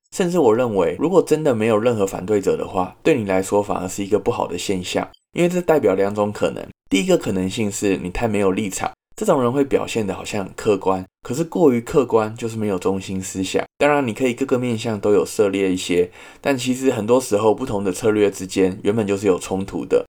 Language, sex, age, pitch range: Chinese, male, 20-39, 95-120 Hz